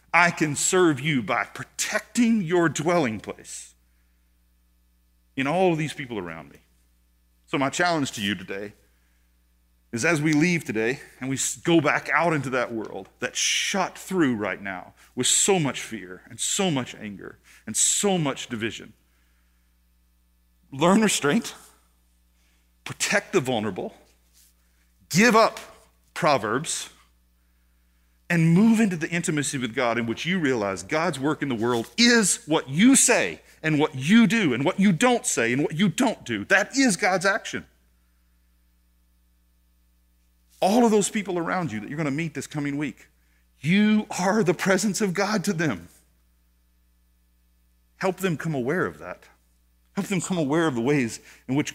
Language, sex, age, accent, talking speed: English, male, 40-59, American, 155 wpm